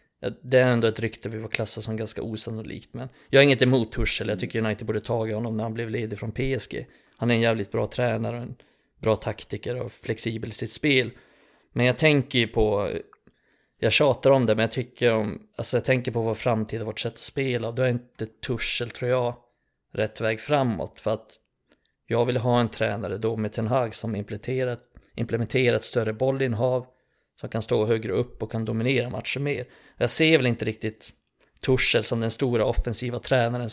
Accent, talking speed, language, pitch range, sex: native, 205 wpm, Swedish, 110-130 Hz, male